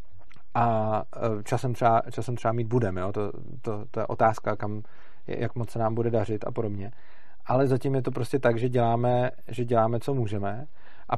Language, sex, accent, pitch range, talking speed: Czech, male, native, 115-130 Hz, 180 wpm